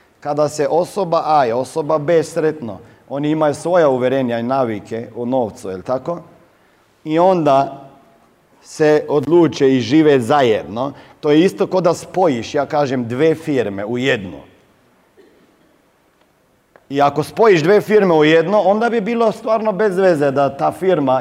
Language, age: Croatian, 40-59